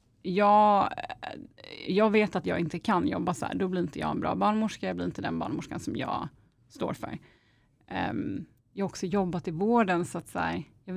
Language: Swedish